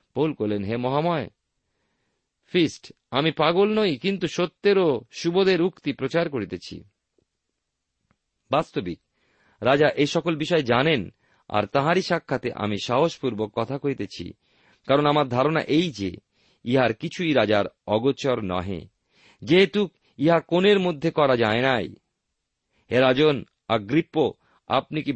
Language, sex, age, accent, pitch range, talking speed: Bengali, male, 50-69, native, 100-155 Hz, 115 wpm